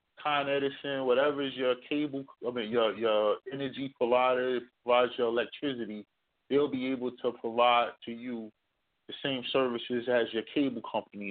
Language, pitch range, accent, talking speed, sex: English, 120-150 Hz, American, 155 wpm, male